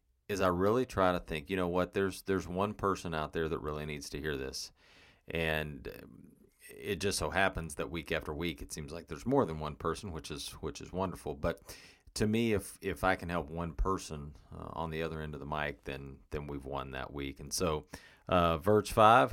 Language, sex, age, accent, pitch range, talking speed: English, male, 40-59, American, 75-90 Hz, 225 wpm